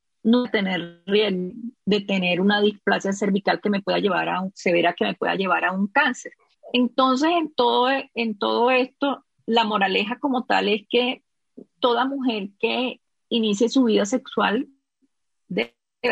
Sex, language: female, Spanish